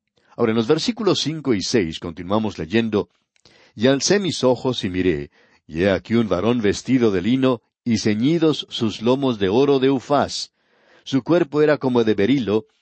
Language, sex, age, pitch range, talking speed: Spanish, male, 60-79, 105-140 Hz, 175 wpm